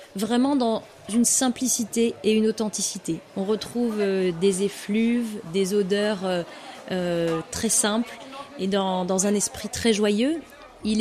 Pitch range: 200-245 Hz